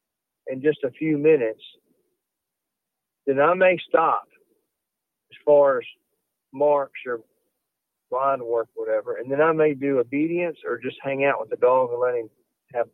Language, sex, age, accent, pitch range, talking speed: English, male, 50-69, American, 135-210 Hz, 160 wpm